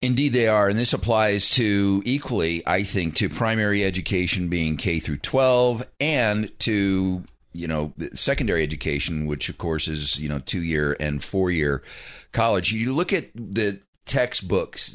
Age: 40-59